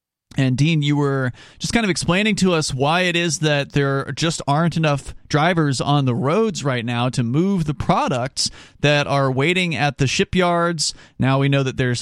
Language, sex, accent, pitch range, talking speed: English, male, American, 135-165 Hz, 195 wpm